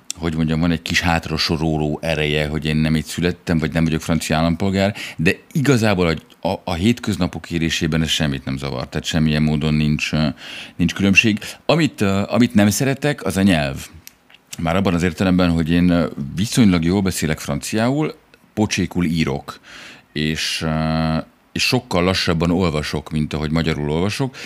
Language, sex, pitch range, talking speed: Hungarian, male, 80-95 Hz, 150 wpm